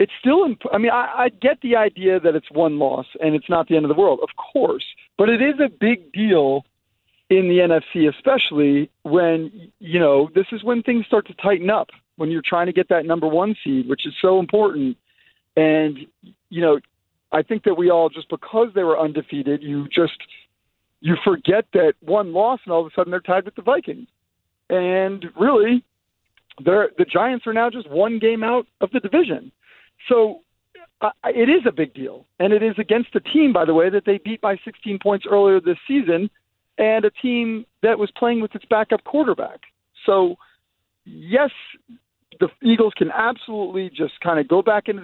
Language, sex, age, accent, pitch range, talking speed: English, male, 40-59, American, 160-220 Hz, 195 wpm